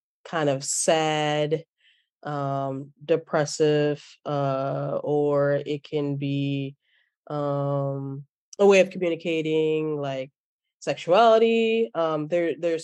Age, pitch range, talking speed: 10-29, 140-155 Hz, 95 wpm